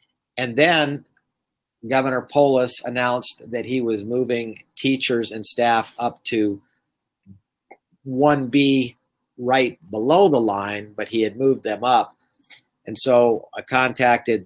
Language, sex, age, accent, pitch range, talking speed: English, male, 50-69, American, 110-125 Hz, 120 wpm